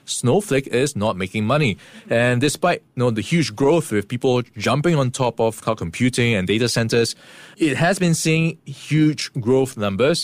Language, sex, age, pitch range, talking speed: English, male, 20-39, 105-135 Hz, 175 wpm